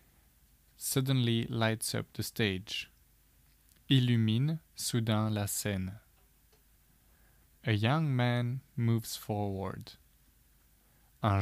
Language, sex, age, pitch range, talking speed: French, male, 20-39, 95-120 Hz, 80 wpm